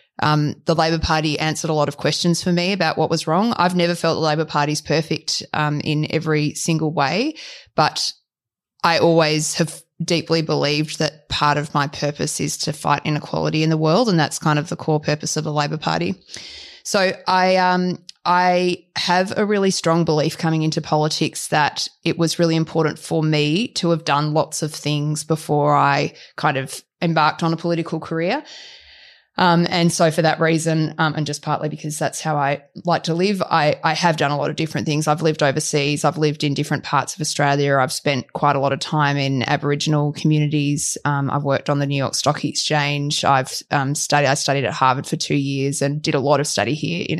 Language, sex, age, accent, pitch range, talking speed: English, female, 20-39, Australian, 150-170 Hz, 210 wpm